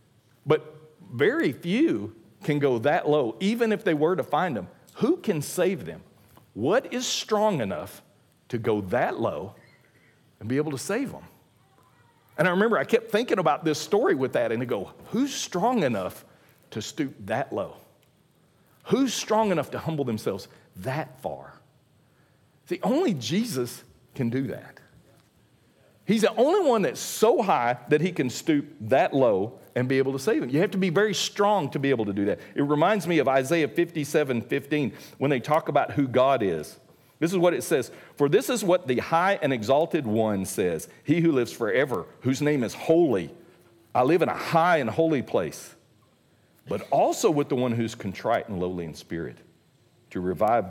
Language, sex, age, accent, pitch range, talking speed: English, male, 50-69, American, 125-180 Hz, 185 wpm